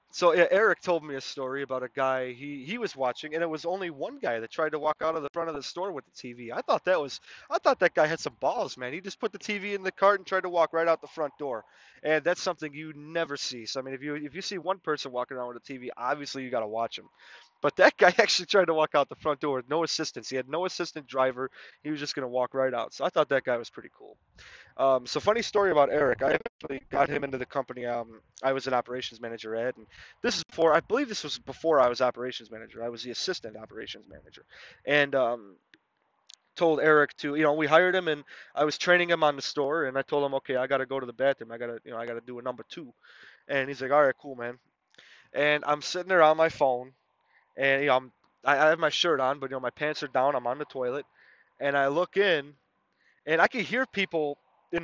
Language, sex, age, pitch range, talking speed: English, male, 20-39, 130-175 Hz, 270 wpm